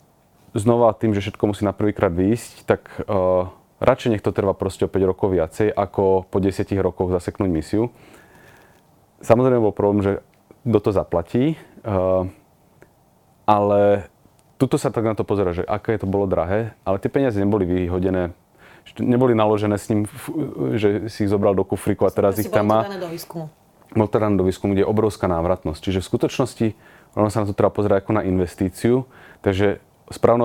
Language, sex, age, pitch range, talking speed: Slovak, male, 30-49, 95-110 Hz, 170 wpm